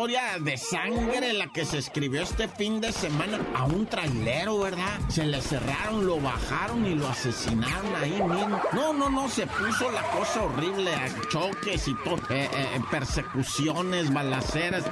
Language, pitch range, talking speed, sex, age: Spanish, 155-215 Hz, 165 wpm, male, 50-69